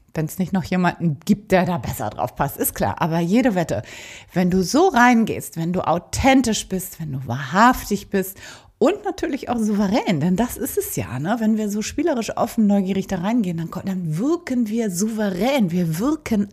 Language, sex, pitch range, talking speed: German, female, 175-240 Hz, 190 wpm